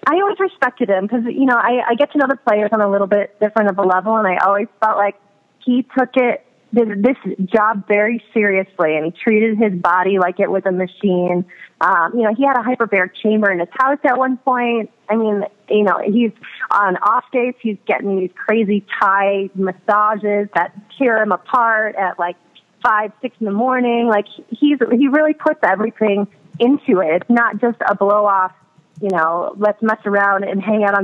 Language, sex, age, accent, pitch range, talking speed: English, female, 30-49, American, 195-235 Hz, 205 wpm